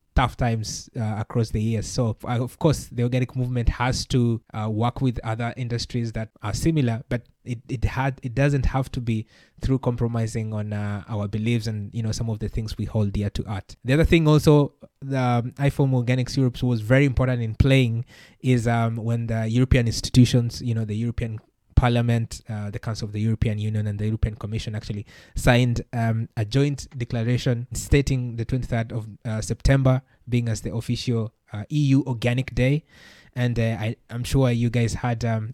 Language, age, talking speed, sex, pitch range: English, 20-39, 195 wpm, male, 115-130 Hz